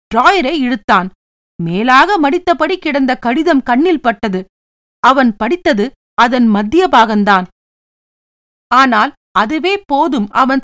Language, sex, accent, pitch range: Tamil, female, native, 220-300 Hz